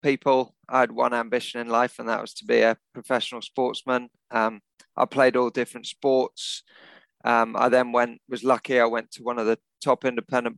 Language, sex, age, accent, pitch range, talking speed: English, male, 20-39, British, 115-125 Hz, 200 wpm